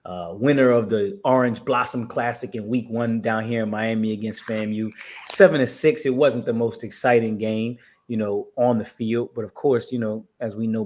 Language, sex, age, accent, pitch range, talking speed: English, male, 20-39, American, 105-120 Hz, 210 wpm